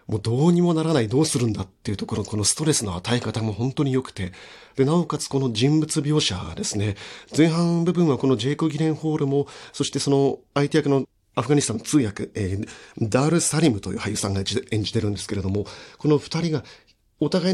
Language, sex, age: Japanese, male, 40-59